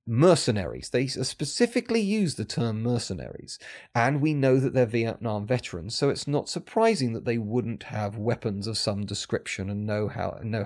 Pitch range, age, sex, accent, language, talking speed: 110-150 Hz, 30-49, male, British, English, 160 wpm